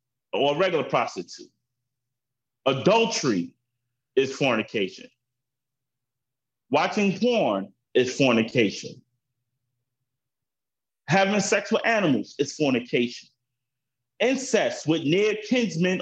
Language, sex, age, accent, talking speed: English, male, 30-49, American, 80 wpm